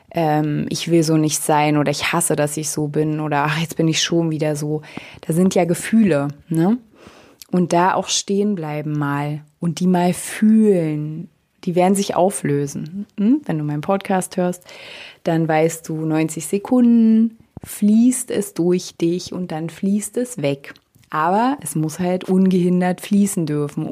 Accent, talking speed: German, 170 wpm